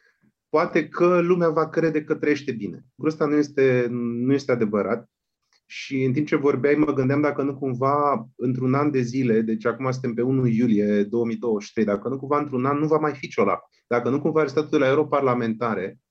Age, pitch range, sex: 30-49, 120-150 Hz, male